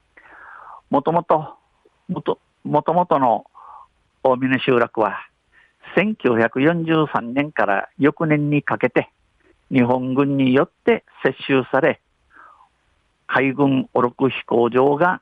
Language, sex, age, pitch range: Japanese, male, 50-69, 120-145 Hz